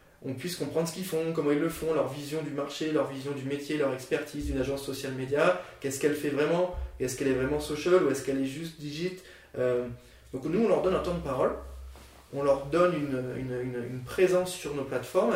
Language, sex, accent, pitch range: French, male, French, 130-165 Hz